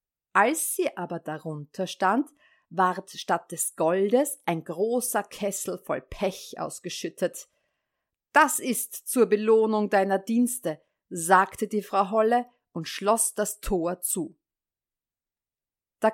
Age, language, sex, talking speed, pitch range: 50-69, German, female, 115 wpm, 180-260 Hz